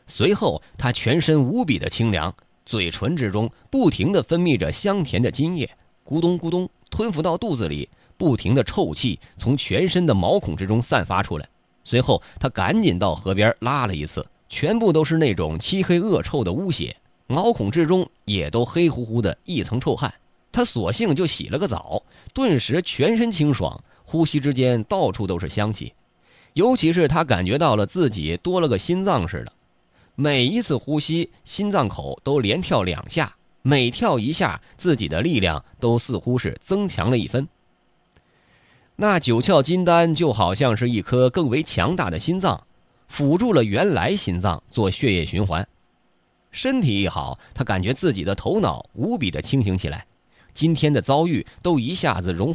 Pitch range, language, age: 105-165 Hz, Chinese, 30-49